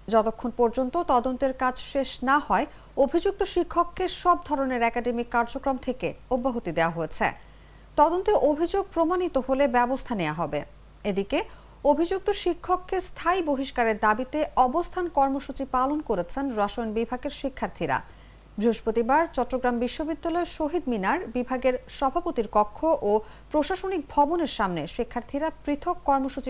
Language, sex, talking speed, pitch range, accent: English, female, 100 wpm, 235-320 Hz, Indian